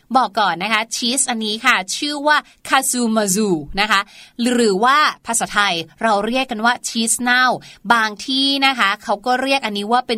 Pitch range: 240-325 Hz